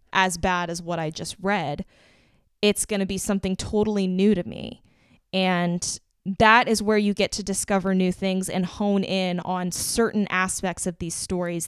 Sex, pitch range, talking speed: female, 185-220 Hz, 180 wpm